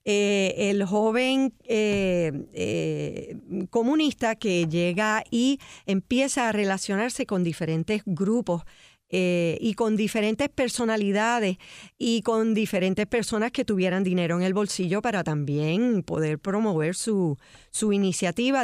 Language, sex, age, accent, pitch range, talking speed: Spanish, female, 40-59, American, 175-235 Hz, 120 wpm